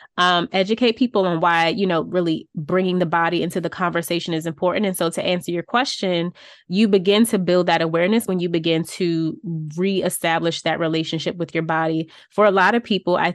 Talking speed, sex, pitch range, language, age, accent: 200 wpm, female, 165-185 Hz, English, 20-39, American